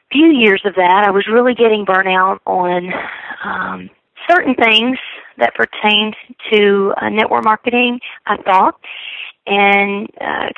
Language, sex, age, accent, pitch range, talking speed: English, female, 30-49, American, 185-220 Hz, 135 wpm